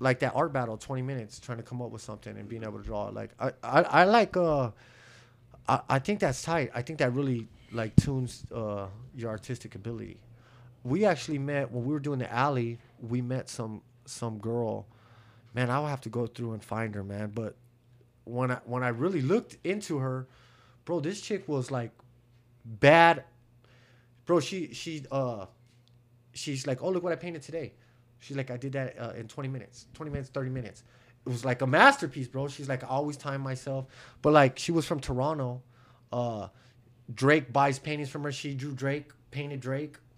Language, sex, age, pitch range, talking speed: English, male, 30-49, 120-145 Hz, 195 wpm